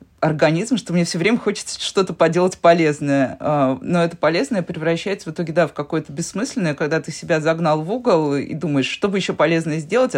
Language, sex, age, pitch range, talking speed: Russian, female, 20-39, 155-190 Hz, 190 wpm